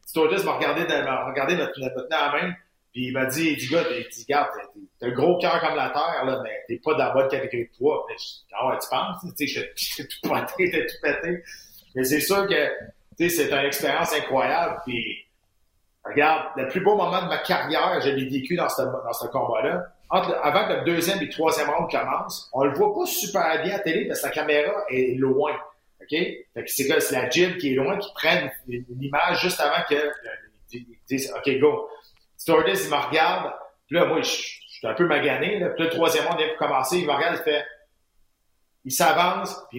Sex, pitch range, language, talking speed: male, 135-180 Hz, French, 215 wpm